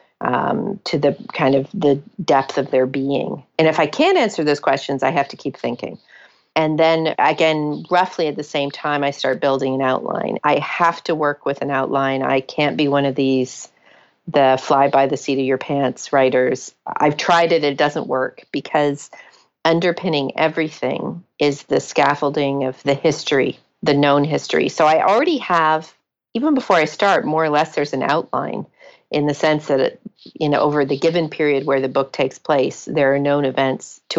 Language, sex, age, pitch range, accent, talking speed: English, female, 40-59, 135-160 Hz, American, 190 wpm